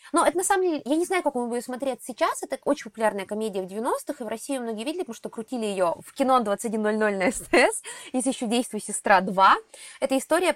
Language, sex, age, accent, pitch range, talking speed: Russian, female, 20-39, native, 200-280 Hz, 235 wpm